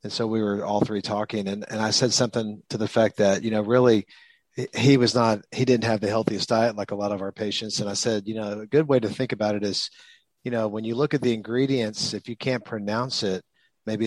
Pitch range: 100-120 Hz